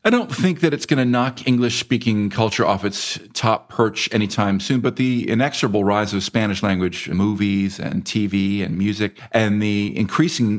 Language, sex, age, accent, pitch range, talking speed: English, male, 40-59, American, 90-110 Hz, 170 wpm